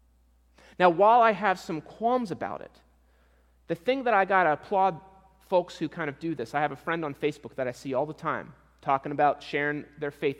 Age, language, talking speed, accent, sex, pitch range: 30-49, English, 220 wpm, American, male, 135-190 Hz